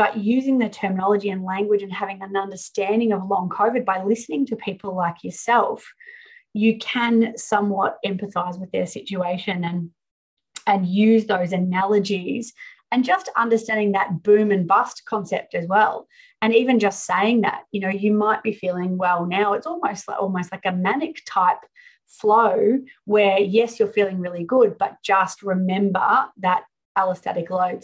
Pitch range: 190-225 Hz